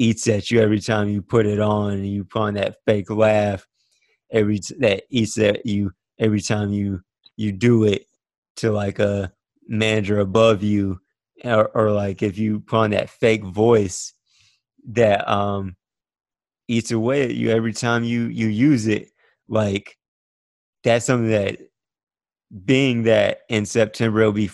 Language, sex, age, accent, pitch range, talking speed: English, male, 20-39, American, 100-115 Hz, 160 wpm